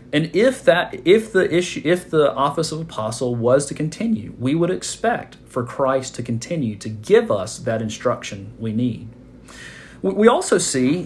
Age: 40-59